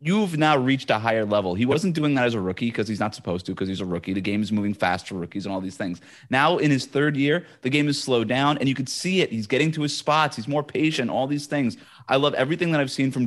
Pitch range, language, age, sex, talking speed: 110-140 Hz, English, 30-49, male, 300 wpm